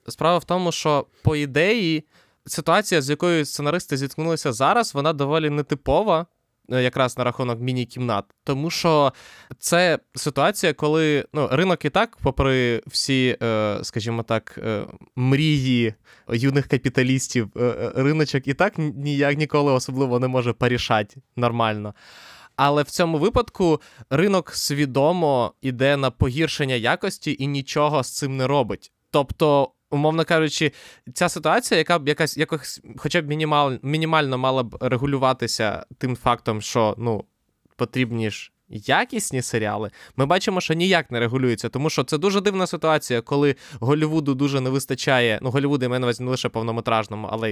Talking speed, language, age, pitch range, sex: 140 wpm, Ukrainian, 20-39, 125-155 Hz, male